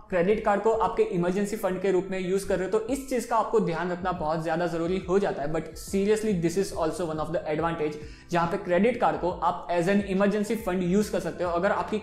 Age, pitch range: 20-39, 170-205 Hz